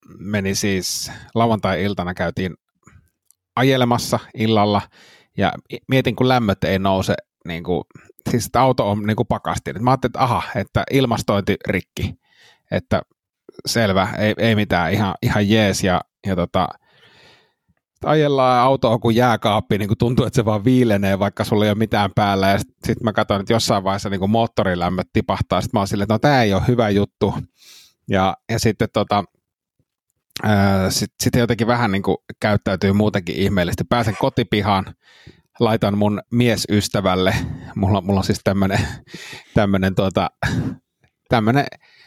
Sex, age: male, 30-49